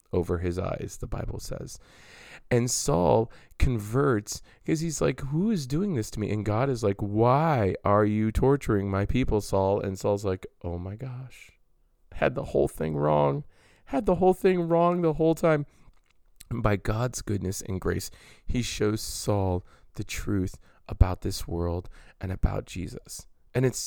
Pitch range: 100-130 Hz